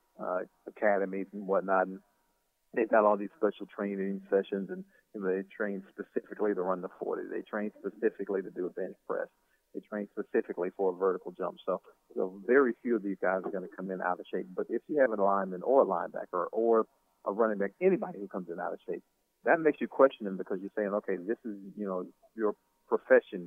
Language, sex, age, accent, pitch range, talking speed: English, male, 40-59, American, 95-110 Hz, 225 wpm